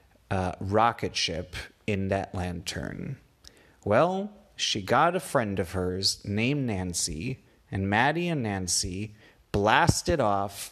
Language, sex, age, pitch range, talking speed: English, male, 30-49, 95-120 Hz, 120 wpm